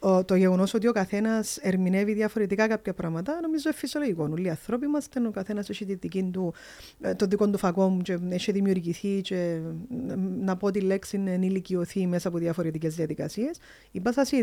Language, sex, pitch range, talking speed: Greek, female, 175-205 Hz, 170 wpm